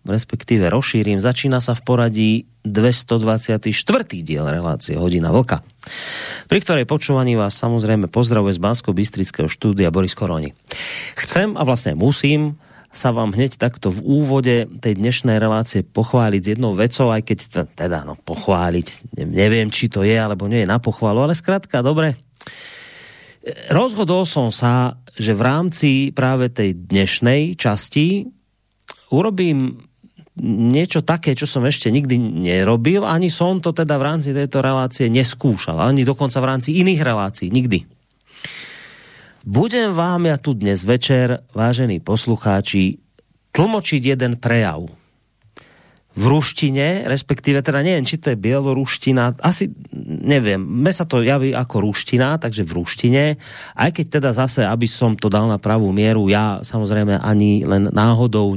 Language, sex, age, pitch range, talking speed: Slovak, male, 30-49, 110-140 Hz, 140 wpm